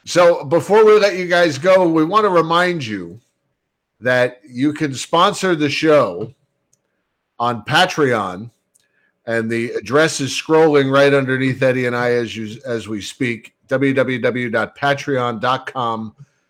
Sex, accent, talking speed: male, American, 130 wpm